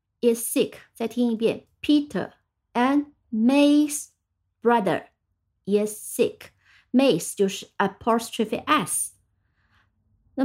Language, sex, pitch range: Chinese, female, 205-280 Hz